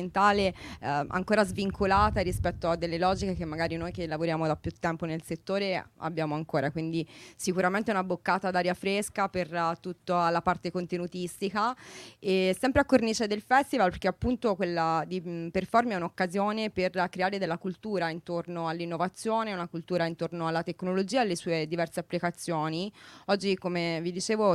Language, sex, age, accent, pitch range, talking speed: Italian, female, 20-39, native, 165-195 Hz, 160 wpm